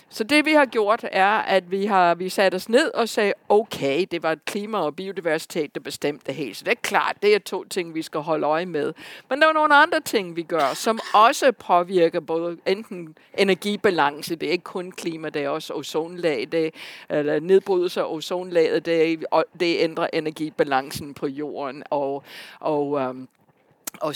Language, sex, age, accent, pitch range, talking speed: Danish, female, 60-79, native, 160-230 Hz, 185 wpm